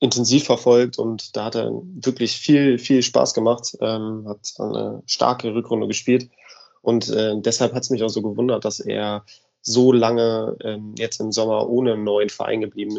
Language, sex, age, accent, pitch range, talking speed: German, male, 20-39, German, 105-120 Hz, 180 wpm